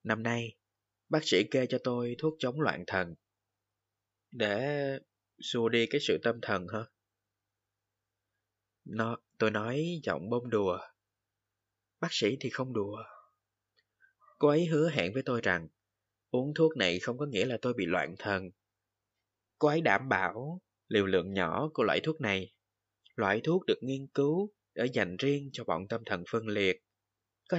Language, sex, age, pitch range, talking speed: Vietnamese, male, 20-39, 100-140 Hz, 160 wpm